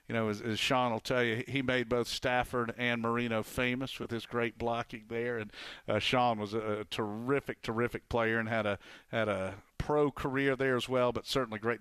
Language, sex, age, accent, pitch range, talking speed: English, male, 50-69, American, 115-135 Hz, 210 wpm